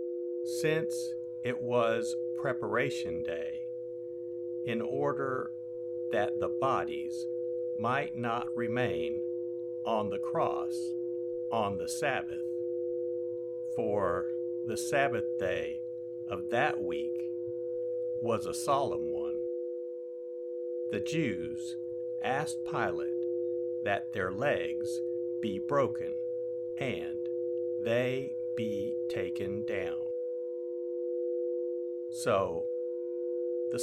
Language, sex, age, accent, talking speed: English, male, 60-79, American, 80 wpm